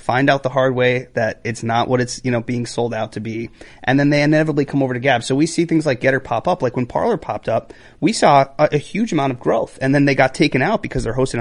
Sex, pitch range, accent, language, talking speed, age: male, 115-155 Hz, American, English, 290 wpm, 30-49